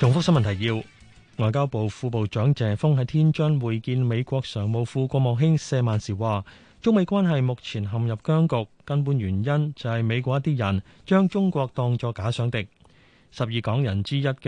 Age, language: 20-39, Chinese